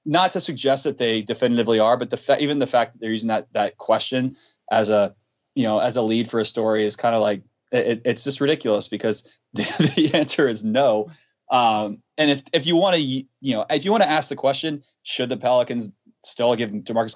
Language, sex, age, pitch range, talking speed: English, male, 20-39, 110-130 Hz, 230 wpm